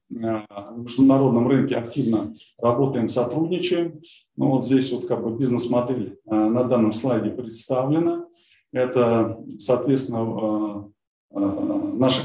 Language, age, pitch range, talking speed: Russian, 20-39, 115-135 Hz, 100 wpm